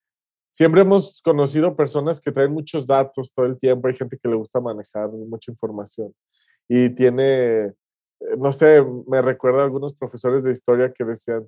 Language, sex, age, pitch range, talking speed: Spanish, male, 20-39, 125-175 Hz, 165 wpm